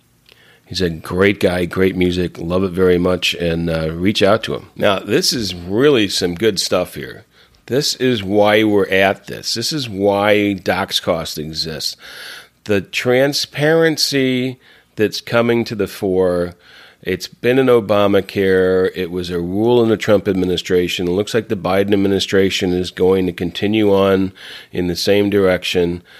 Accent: American